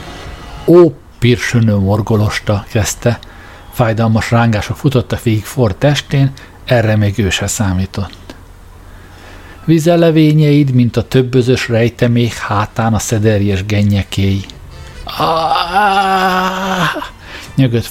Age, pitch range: 60-79, 100-130 Hz